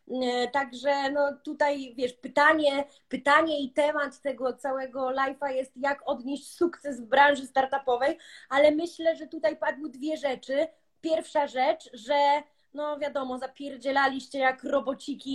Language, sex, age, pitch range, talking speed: Polish, female, 20-39, 275-330 Hz, 130 wpm